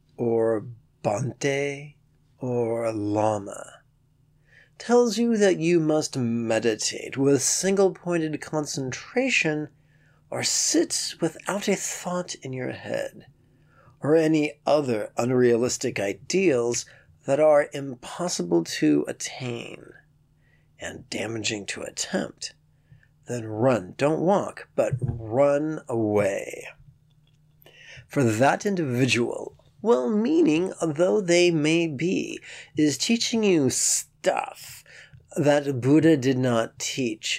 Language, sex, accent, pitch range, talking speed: English, male, American, 120-160 Hz, 100 wpm